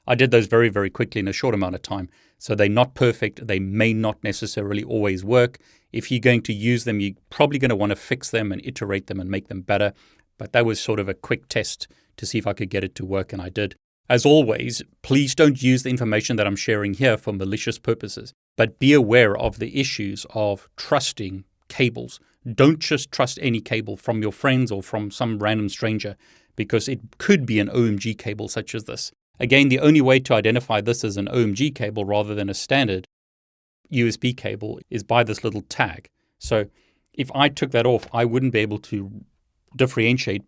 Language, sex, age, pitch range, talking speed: English, male, 30-49, 105-125 Hz, 210 wpm